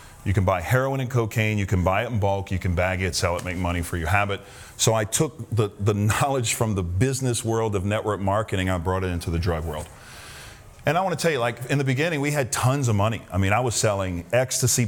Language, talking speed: English, 255 wpm